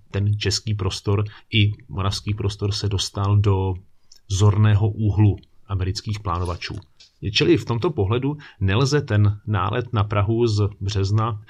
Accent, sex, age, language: native, male, 30-49, Czech